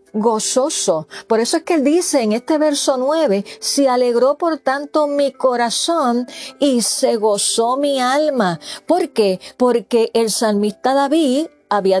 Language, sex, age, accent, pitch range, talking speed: Spanish, female, 40-59, American, 205-280 Hz, 145 wpm